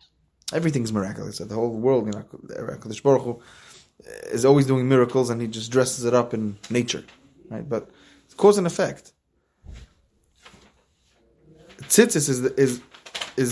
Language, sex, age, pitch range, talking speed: English, male, 20-39, 115-145 Hz, 130 wpm